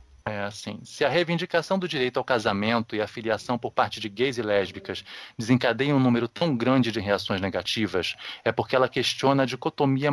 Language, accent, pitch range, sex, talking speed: Portuguese, Brazilian, 115-135 Hz, male, 190 wpm